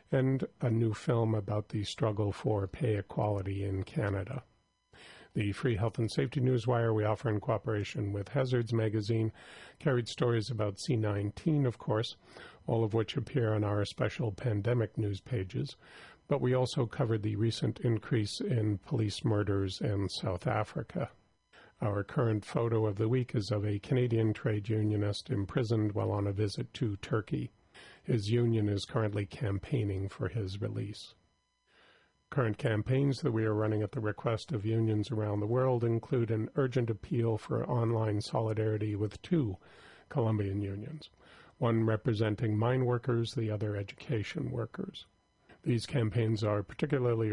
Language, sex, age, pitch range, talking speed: English, male, 50-69, 105-120 Hz, 150 wpm